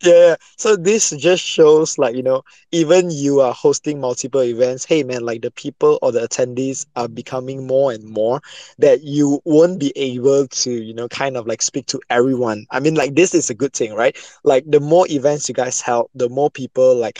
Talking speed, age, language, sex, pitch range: 215 wpm, 20-39, English, male, 130-160 Hz